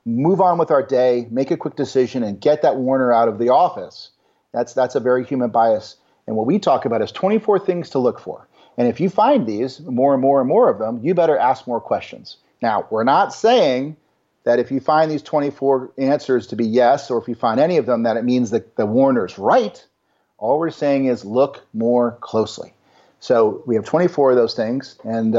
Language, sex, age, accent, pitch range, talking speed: English, male, 40-59, American, 125-165 Hz, 220 wpm